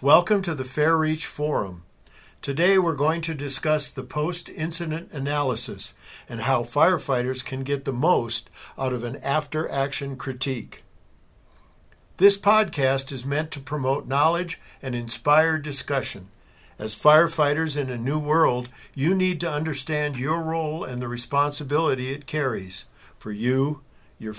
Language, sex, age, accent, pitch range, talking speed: English, male, 50-69, American, 130-160 Hz, 140 wpm